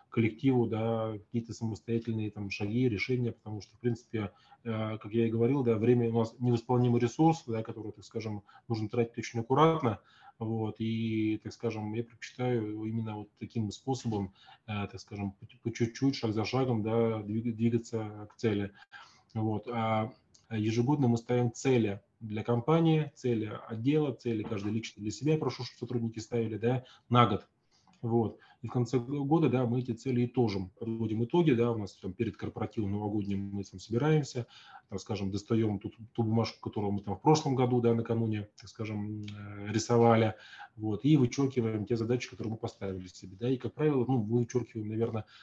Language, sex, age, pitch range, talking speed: Russian, male, 20-39, 110-120 Hz, 175 wpm